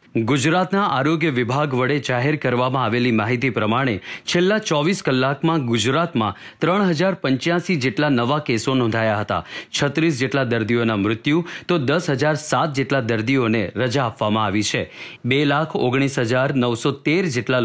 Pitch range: 125-165 Hz